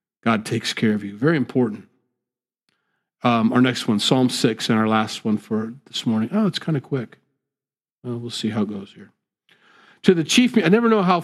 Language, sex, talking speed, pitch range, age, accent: English, male, 210 wpm, 115-160 Hz, 40-59, American